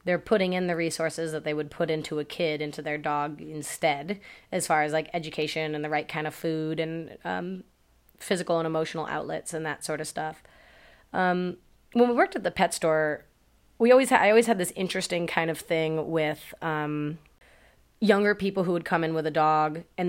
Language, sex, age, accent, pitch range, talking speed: English, female, 30-49, American, 155-185 Hz, 205 wpm